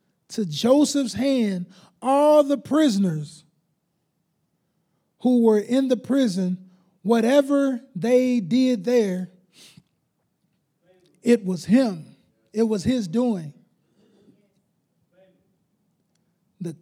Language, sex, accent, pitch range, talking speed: English, male, American, 185-235 Hz, 80 wpm